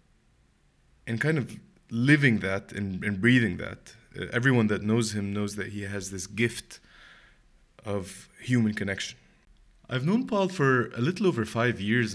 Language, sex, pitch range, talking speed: English, male, 100-120 Hz, 160 wpm